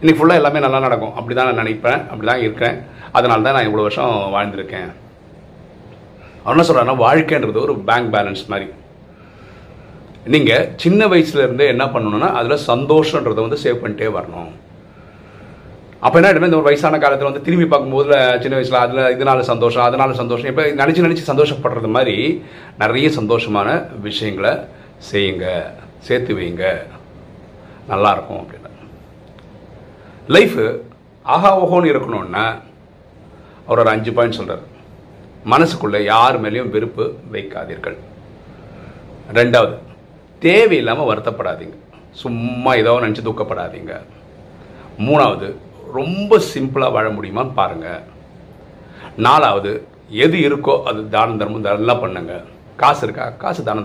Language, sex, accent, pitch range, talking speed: Tamil, male, native, 110-145 Hz, 115 wpm